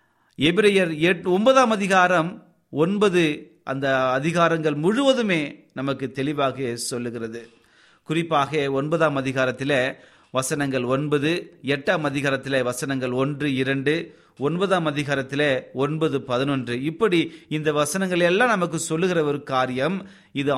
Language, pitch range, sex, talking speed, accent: Tamil, 135-180 Hz, male, 95 wpm, native